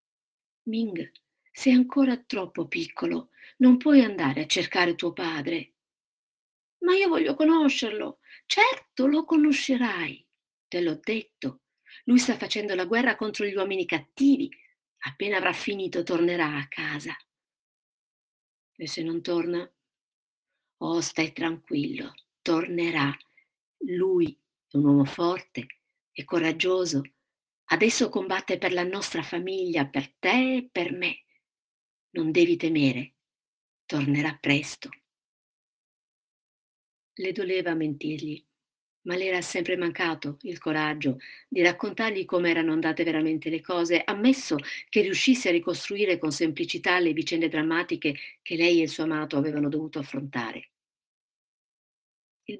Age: 50-69